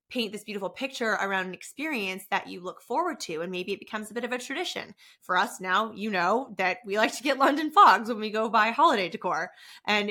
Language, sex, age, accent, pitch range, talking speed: English, female, 20-39, American, 195-250 Hz, 235 wpm